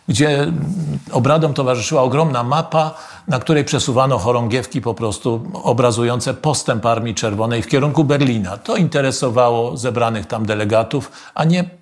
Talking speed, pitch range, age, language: 125 wpm, 115-160 Hz, 50-69, Polish